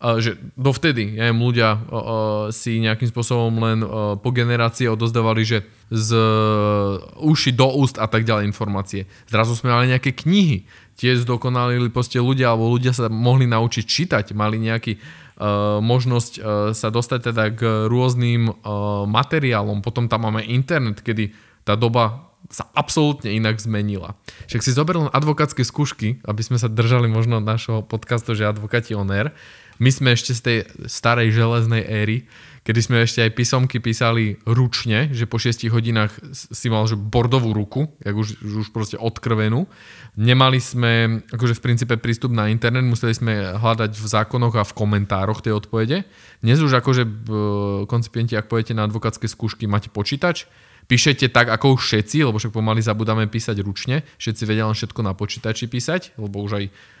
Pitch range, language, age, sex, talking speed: 110-125 Hz, Slovak, 20-39, male, 165 wpm